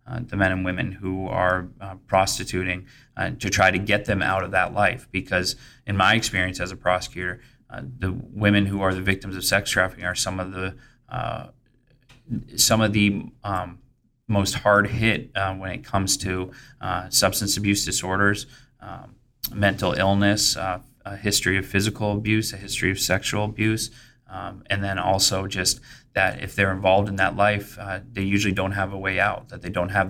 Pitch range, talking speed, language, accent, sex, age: 95-110 Hz, 190 wpm, English, American, male, 20-39